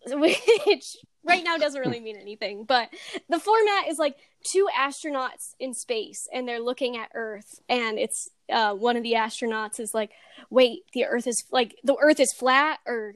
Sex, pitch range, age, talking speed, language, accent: female, 225-290 Hz, 10-29, 180 wpm, English, American